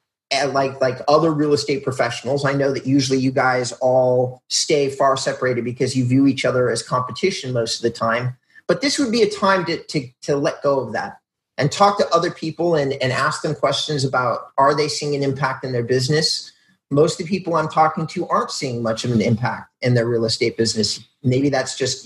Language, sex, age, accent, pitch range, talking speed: English, male, 30-49, American, 130-160 Hz, 220 wpm